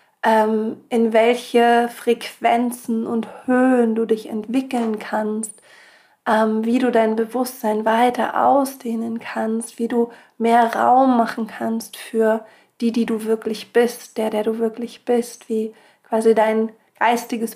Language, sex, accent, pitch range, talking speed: German, female, German, 225-240 Hz, 135 wpm